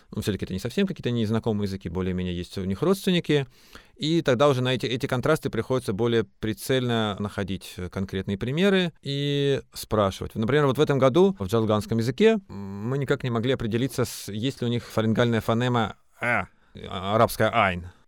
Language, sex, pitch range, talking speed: Russian, male, 95-130 Hz, 165 wpm